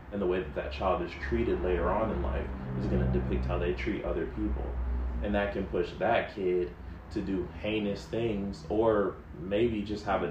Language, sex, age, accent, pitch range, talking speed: English, male, 20-39, American, 85-100 Hz, 210 wpm